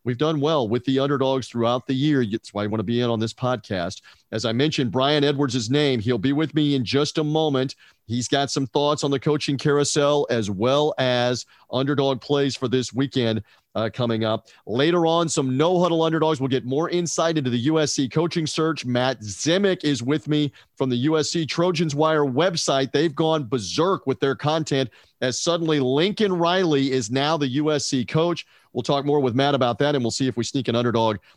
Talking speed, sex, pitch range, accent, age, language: 205 wpm, male, 125-155 Hz, American, 40-59, English